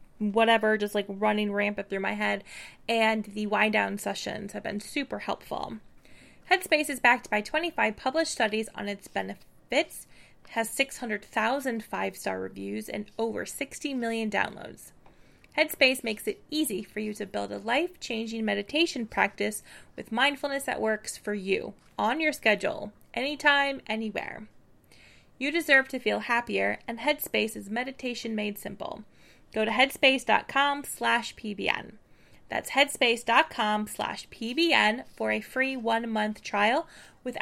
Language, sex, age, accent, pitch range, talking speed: English, female, 20-39, American, 210-270 Hz, 135 wpm